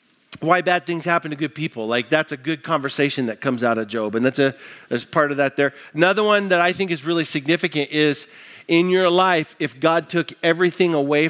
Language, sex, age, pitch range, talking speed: English, male, 40-59, 140-185 Hz, 225 wpm